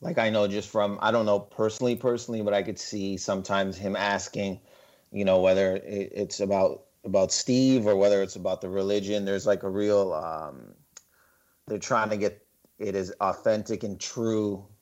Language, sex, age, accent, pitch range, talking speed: English, male, 30-49, American, 100-110 Hz, 180 wpm